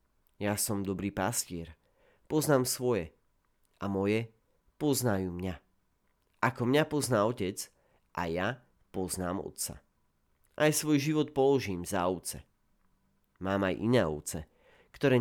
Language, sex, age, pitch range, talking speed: Slovak, male, 40-59, 90-125 Hz, 115 wpm